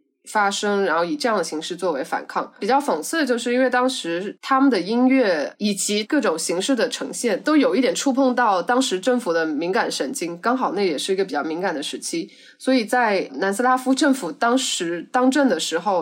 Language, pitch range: Chinese, 190-265 Hz